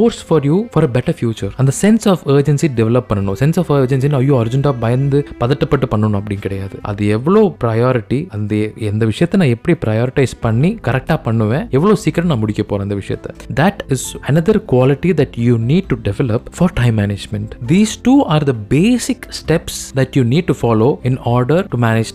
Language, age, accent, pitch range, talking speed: Tamil, 20-39, native, 105-145 Hz, 200 wpm